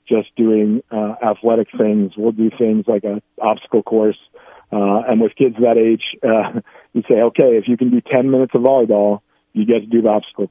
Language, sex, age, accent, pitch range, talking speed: English, male, 40-59, American, 110-120 Hz, 205 wpm